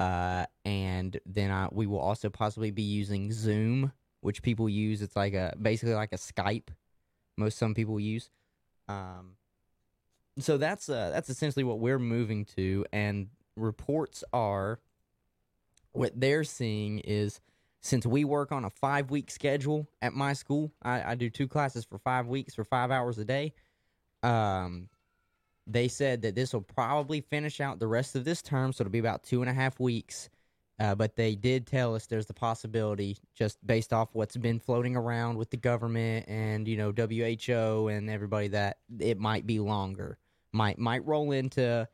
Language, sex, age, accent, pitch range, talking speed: English, male, 20-39, American, 105-130 Hz, 175 wpm